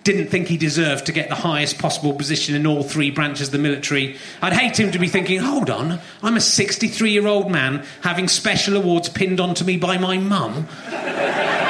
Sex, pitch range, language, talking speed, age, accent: male, 155-215 Hz, English, 195 wpm, 30-49, British